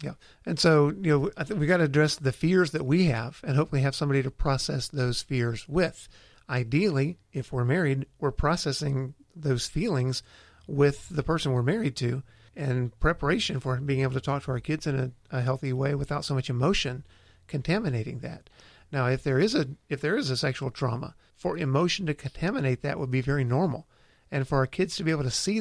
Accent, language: American, English